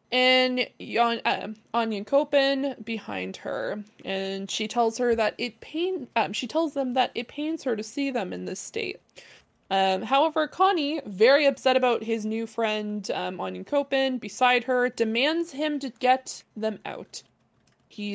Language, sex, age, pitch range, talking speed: English, female, 20-39, 205-275 Hz, 160 wpm